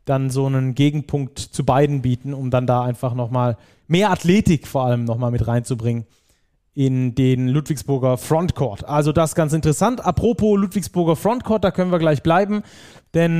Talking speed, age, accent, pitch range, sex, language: 160 wpm, 30-49, German, 145-175 Hz, male, German